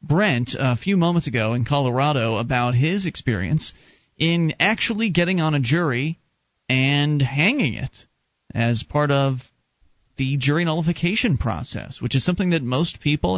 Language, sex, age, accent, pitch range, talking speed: English, male, 30-49, American, 135-185 Hz, 145 wpm